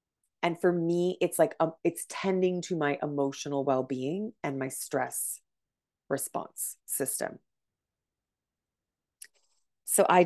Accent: American